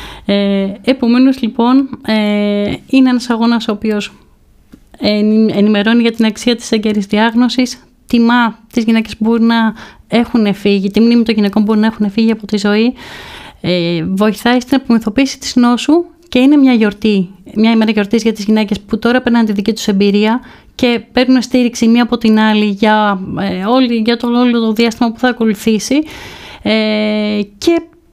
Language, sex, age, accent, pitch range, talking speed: Greek, female, 30-49, native, 215-245 Hz, 155 wpm